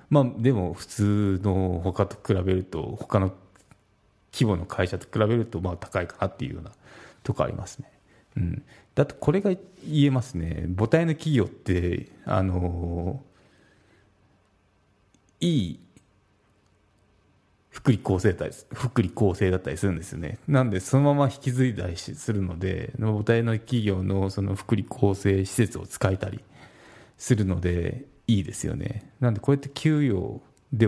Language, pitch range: Japanese, 95-125 Hz